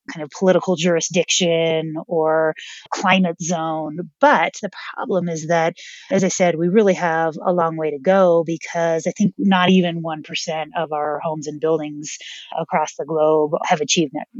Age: 30-49